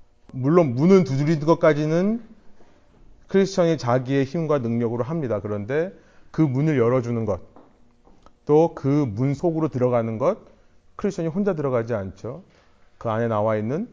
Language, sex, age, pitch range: Korean, male, 30-49, 115-170 Hz